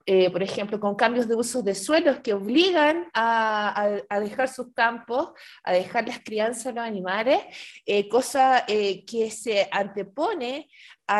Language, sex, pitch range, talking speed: Spanish, female, 185-245 Hz, 160 wpm